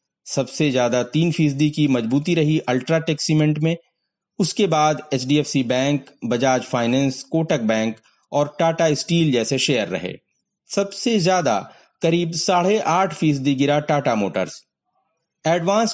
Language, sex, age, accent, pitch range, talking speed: Hindi, male, 30-49, native, 135-170 Hz, 130 wpm